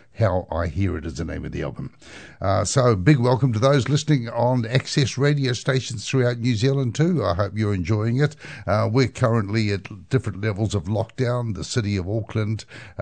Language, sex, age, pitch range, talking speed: English, male, 60-79, 95-120 Hz, 195 wpm